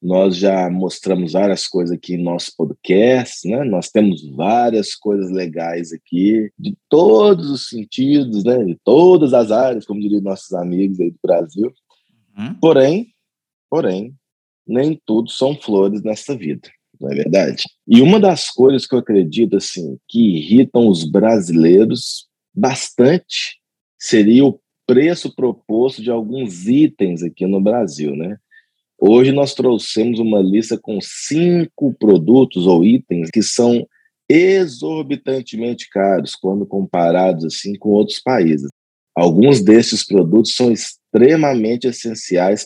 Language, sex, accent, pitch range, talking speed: English, male, Brazilian, 95-130 Hz, 130 wpm